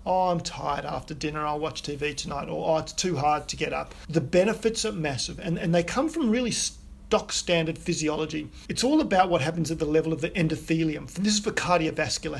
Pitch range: 160-195 Hz